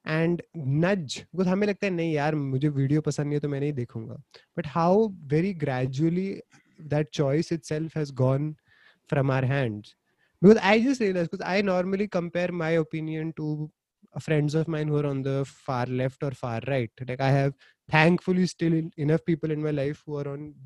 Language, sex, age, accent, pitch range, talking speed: Hindi, male, 20-39, native, 140-180 Hz, 40 wpm